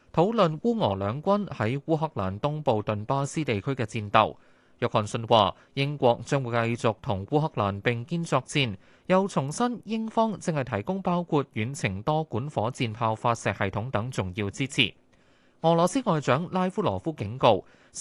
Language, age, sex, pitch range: Chinese, 20-39, male, 110-160 Hz